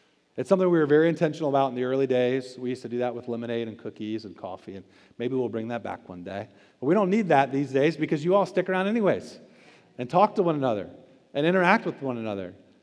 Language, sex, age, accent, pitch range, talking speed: English, male, 40-59, American, 130-165 Hz, 250 wpm